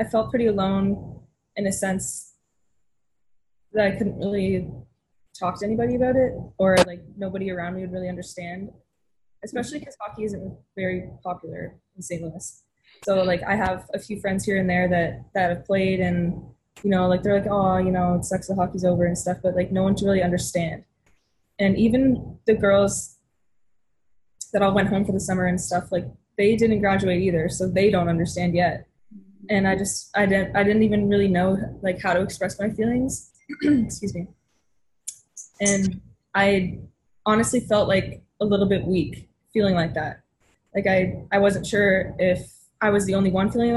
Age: 20-39